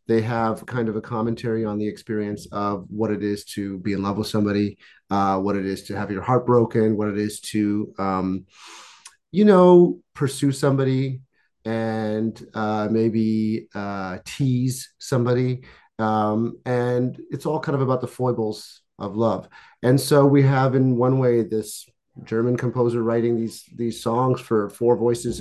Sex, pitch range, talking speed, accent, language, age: male, 110-135 Hz, 170 wpm, American, English, 30-49